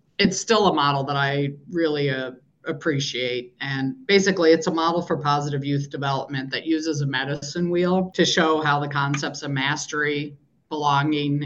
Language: English